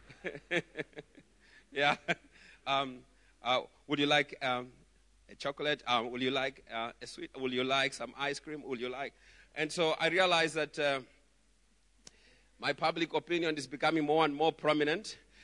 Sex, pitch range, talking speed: male, 145-220 Hz, 155 wpm